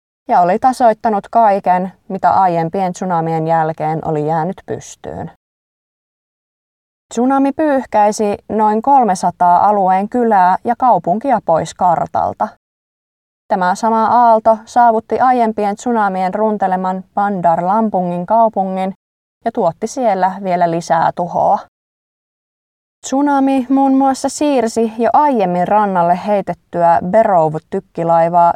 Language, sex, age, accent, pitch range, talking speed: Finnish, female, 20-39, native, 180-230 Hz, 95 wpm